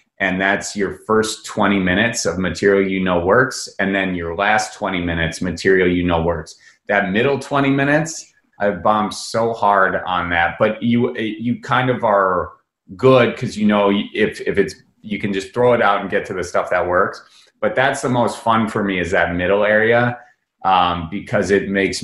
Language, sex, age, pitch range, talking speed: English, male, 30-49, 85-105 Hz, 195 wpm